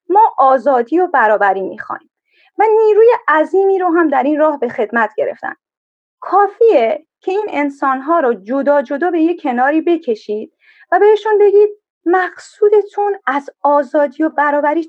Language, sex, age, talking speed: Persian, female, 30-49, 140 wpm